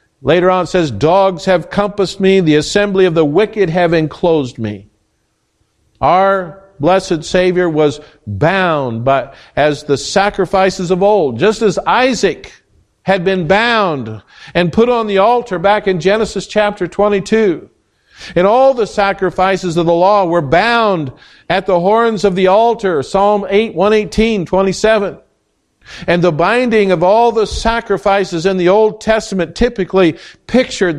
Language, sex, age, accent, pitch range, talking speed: English, male, 50-69, American, 165-205 Hz, 145 wpm